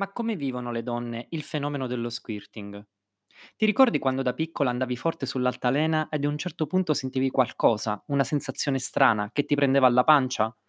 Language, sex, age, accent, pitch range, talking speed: Italian, male, 20-39, native, 120-180 Hz, 180 wpm